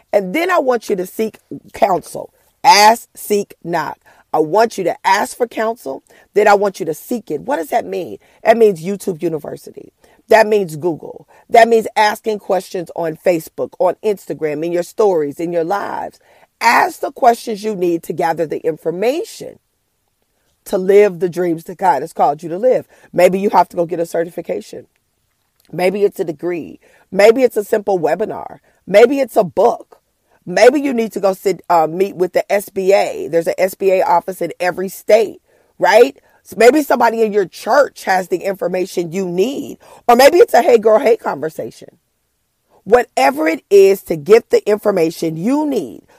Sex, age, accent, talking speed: female, 40-59, American, 180 wpm